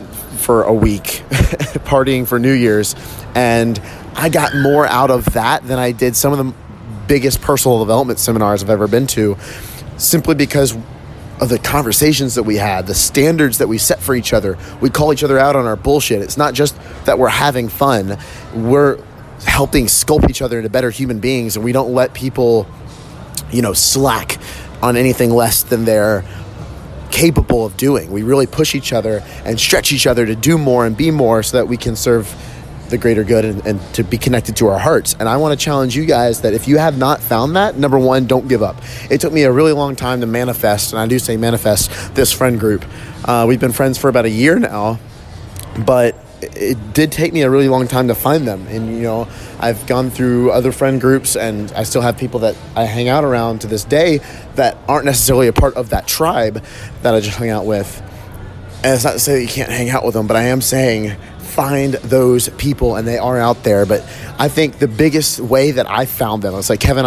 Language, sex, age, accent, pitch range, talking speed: English, male, 30-49, American, 110-135 Hz, 220 wpm